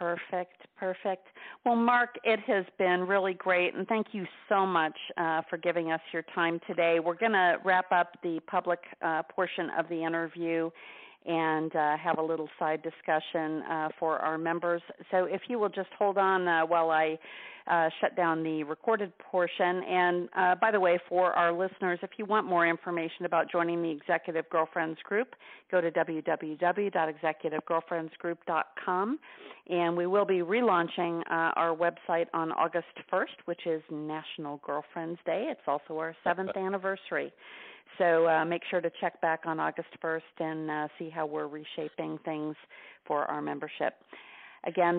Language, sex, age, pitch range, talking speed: English, female, 40-59, 160-185 Hz, 165 wpm